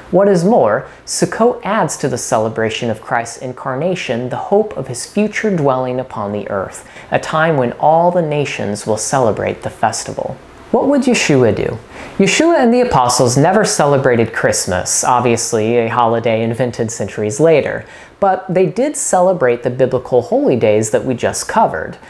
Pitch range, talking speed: 130-215 Hz, 160 wpm